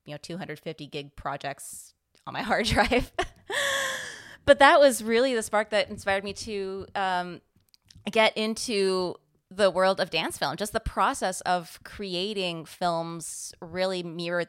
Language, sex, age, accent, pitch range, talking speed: English, female, 20-39, American, 155-190 Hz, 145 wpm